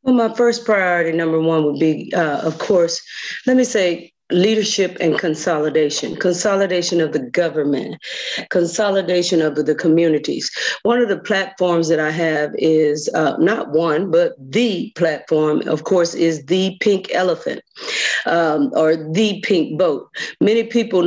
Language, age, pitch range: English, 40-59, 165-205 Hz